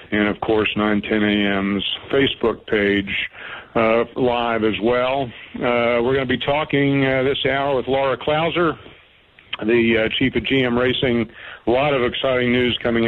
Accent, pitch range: American, 110-130 Hz